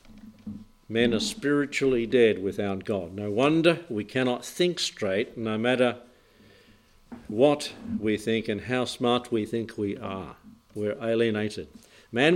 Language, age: English, 50-69